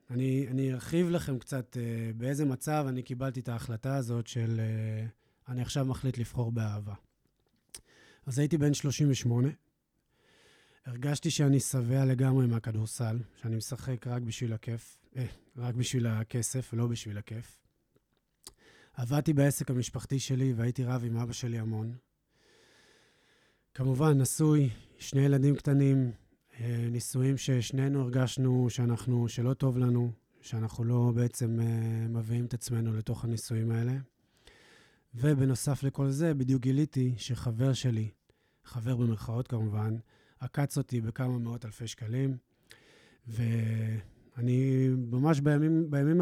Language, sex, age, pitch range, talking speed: Hebrew, male, 20-39, 115-135 Hz, 120 wpm